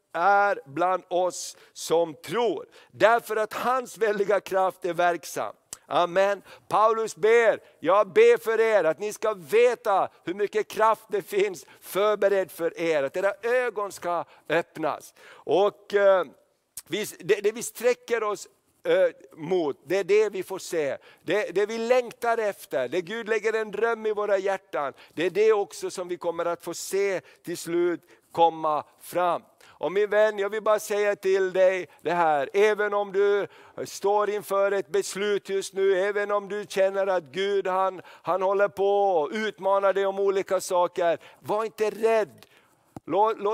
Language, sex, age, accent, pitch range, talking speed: Swedish, male, 50-69, native, 185-220 Hz, 155 wpm